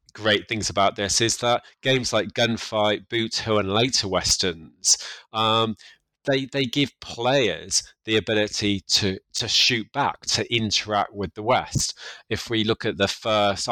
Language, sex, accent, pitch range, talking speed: English, male, British, 95-115 Hz, 155 wpm